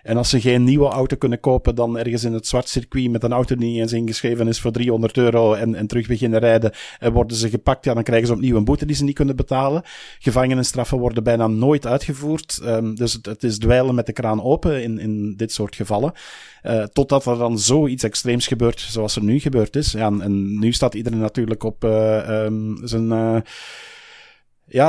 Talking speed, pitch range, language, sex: 215 wpm, 110-130 Hz, Dutch, male